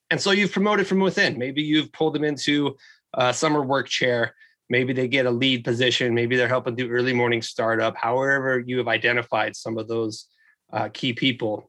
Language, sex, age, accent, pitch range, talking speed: English, male, 20-39, American, 120-150 Hz, 195 wpm